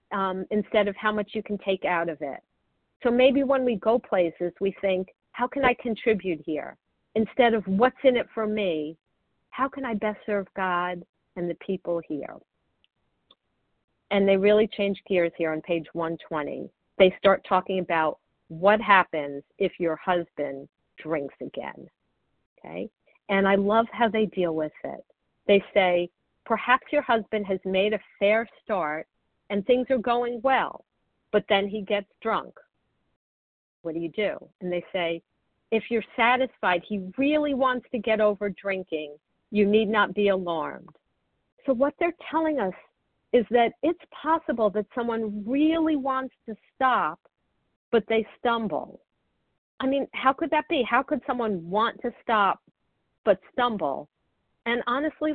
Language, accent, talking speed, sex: English, American, 160 wpm, female